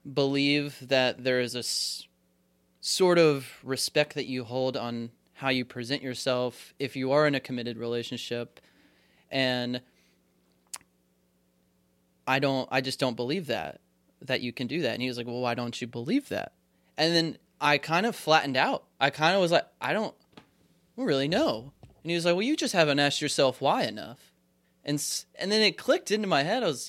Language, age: English, 20-39